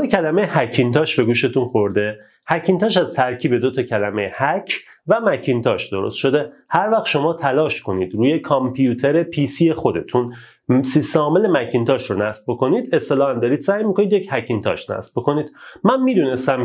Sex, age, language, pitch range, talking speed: male, 30-49, Persian, 120-170 Hz, 150 wpm